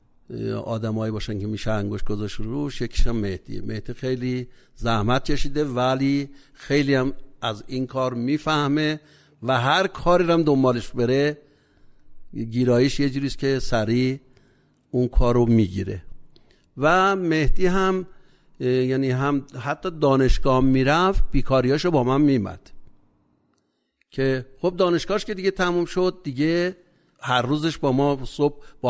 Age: 60-79